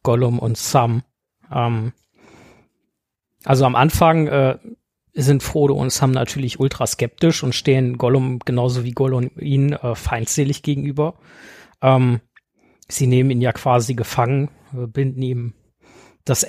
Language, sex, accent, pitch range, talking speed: German, male, German, 120-140 Hz, 125 wpm